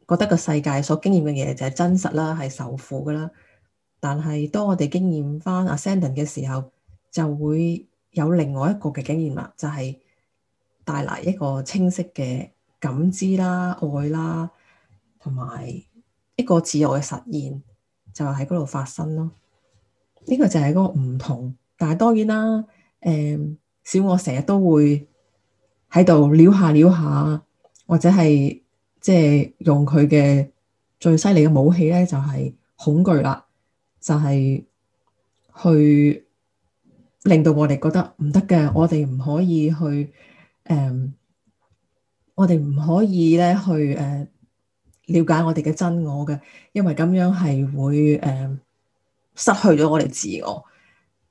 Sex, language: female, Chinese